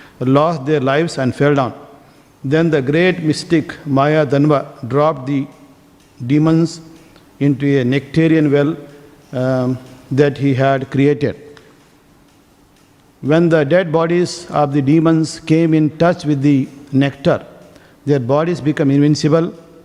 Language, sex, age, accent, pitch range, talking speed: English, male, 50-69, Indian, 135-155 Hz, 125 wpm